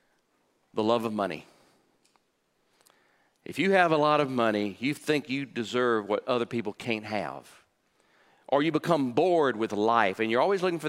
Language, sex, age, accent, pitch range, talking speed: English, male, 50-69, American, 135-195 Hz, 170 wpm